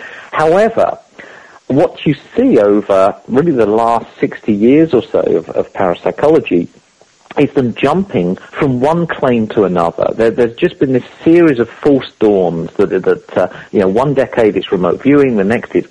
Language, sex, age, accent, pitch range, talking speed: English, male, 50-69, British, 105-150 Hz, 170 wpm